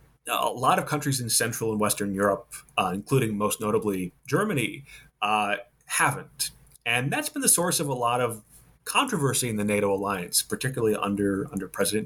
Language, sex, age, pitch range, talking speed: English, male, 30-49, 105-135 Hz, 170 wpm